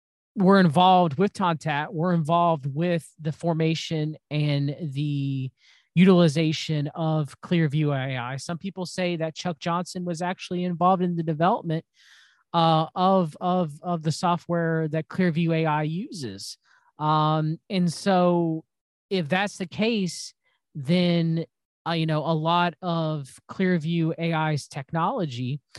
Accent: American